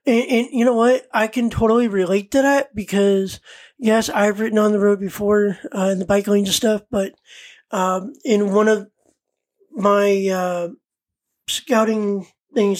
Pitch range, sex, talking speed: 195-230 Hz, male, 165 wpm